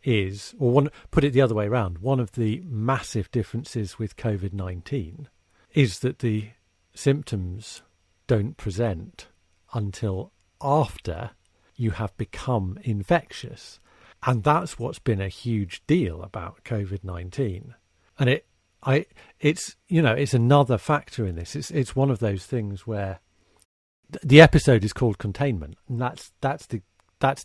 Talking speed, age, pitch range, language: 140 wpm, 50-69, 95-125 Hz, English